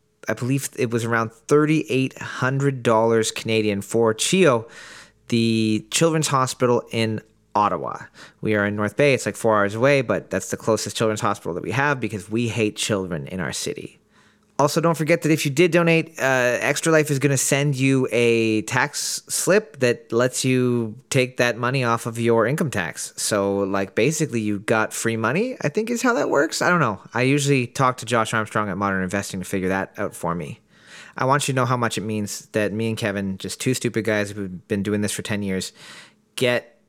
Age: 30-49